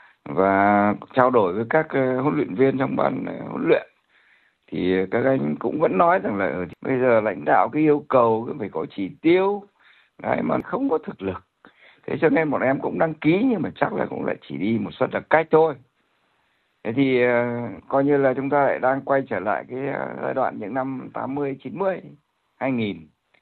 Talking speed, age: 215 wpm, 60-79